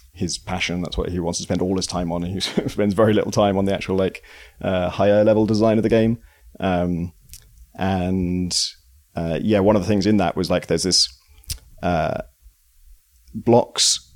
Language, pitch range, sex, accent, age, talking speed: English, 80-100 Hz, male, British, 30-49, 190 wpm